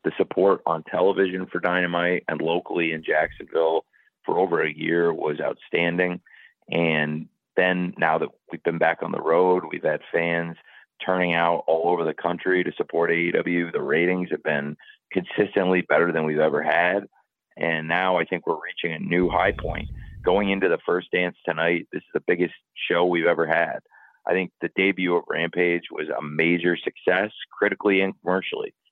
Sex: male